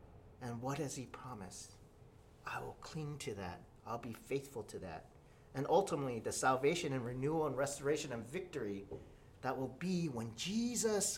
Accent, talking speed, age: American, 160 wpm, 40-59